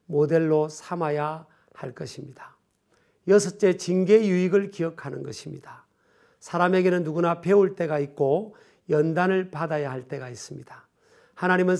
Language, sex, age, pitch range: Korean, male, 50-69, 160-200 Hz